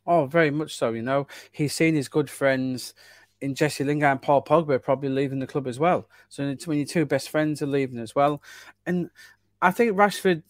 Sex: male